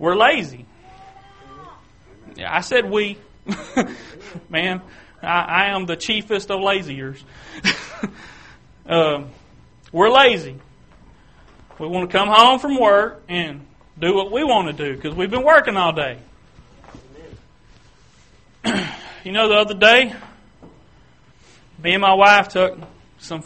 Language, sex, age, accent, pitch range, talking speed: English, male, 30-49, American, 155-205 Hz, 120 wpm